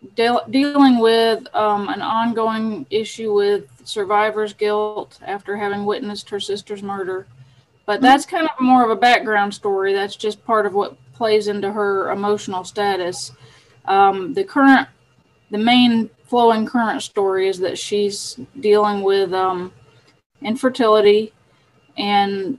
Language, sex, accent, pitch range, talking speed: English, female, American, 195-220 Hz, 135 wpm